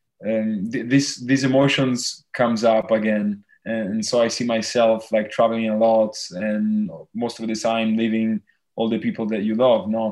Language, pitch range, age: English, 105-120 Hz, 20-39